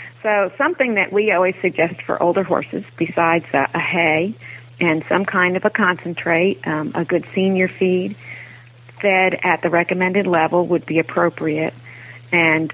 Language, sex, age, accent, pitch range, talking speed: English, female, 40-59, American, 150-185 Hz, 155 wpm